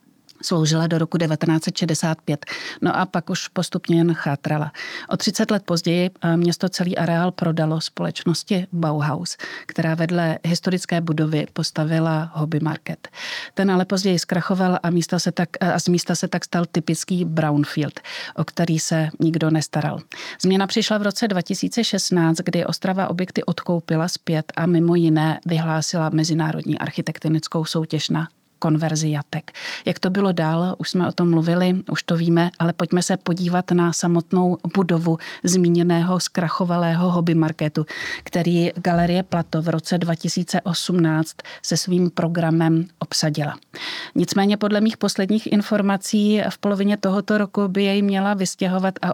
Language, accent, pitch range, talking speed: Czech, native, 165-190 Hz, 135 wpm